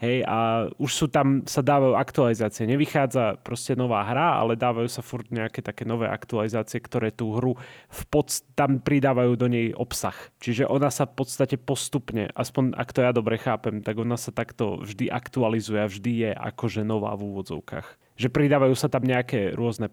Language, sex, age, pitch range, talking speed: Slovak, male, 30-49, 115-135 Hz, 185 wpm